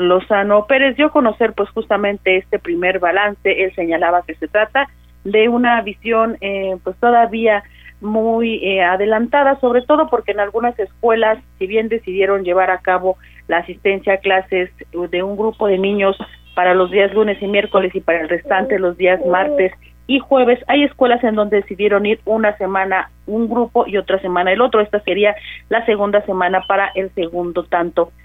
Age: 40-59